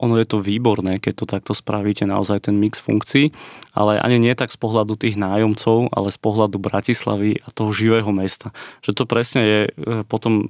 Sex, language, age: male, Slovak, 30-49